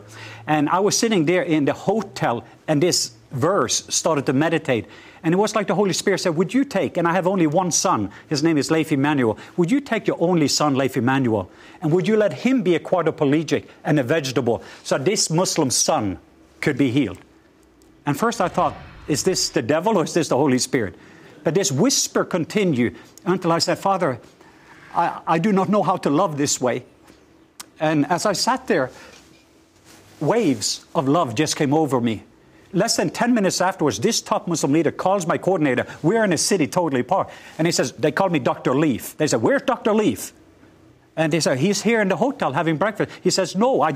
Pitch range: 155-195 Hz